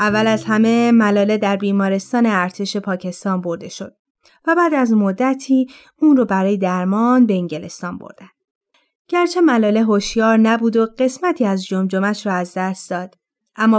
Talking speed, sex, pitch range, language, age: 150 wpm, female, 200-260 Hz, Persian, 30-49